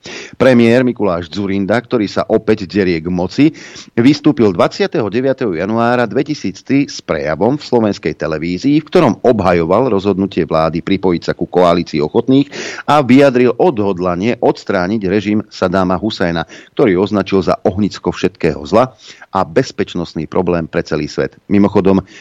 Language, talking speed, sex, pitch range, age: Slovak, 130 wpm, male, 90-120 Hz, 40-59